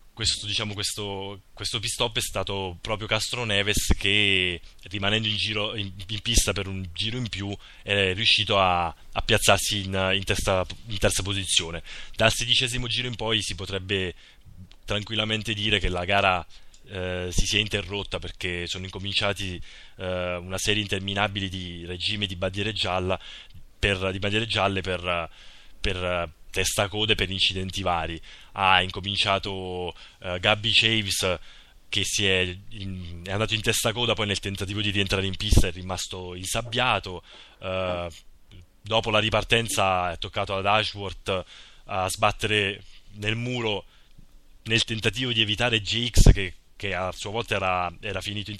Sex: male